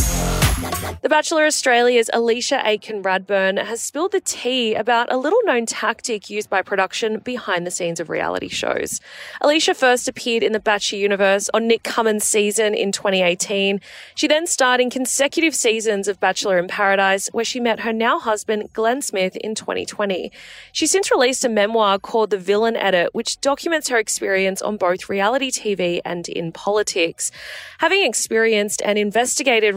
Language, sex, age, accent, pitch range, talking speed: English, female, 20-39, Australian, 195-260 Hz, 160 wpm